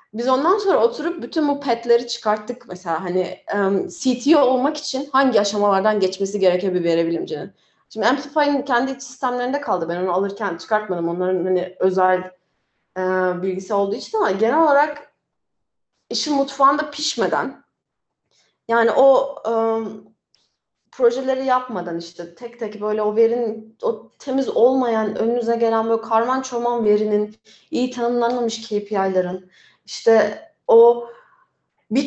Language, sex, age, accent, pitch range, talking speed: Turkish, female, 30-49, native, 210-270 Hz, 130 wpm